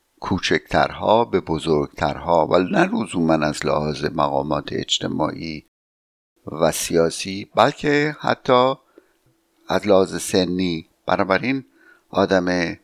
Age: 60-79